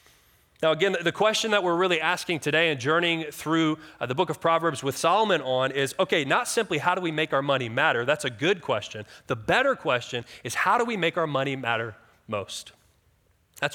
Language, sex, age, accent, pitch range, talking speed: English, male, 30-49, American, 140-190 Hz, 210 wpm